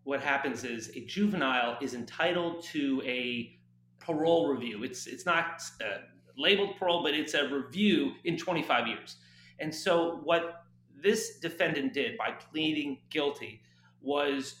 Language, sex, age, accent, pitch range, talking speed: English, male, 30-49, American, 135-180 Hz, 140 wpm